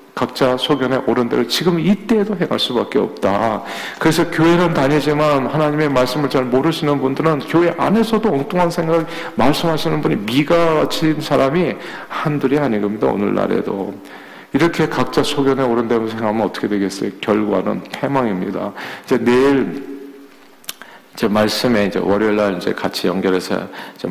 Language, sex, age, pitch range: Korean, male, 50-69, 115-150 Hz